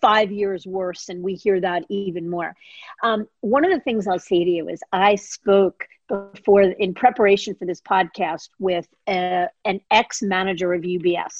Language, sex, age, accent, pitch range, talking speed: English, female, 40-59, American, 180-205 Hz, 170 wpm